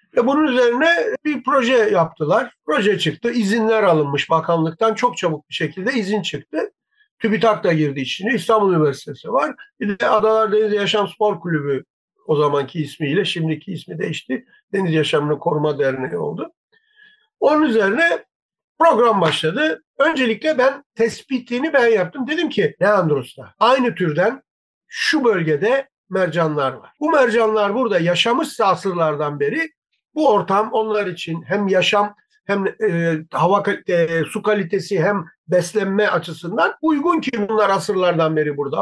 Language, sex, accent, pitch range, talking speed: Turkish, male, native, 170-255 Hz, 135 wpm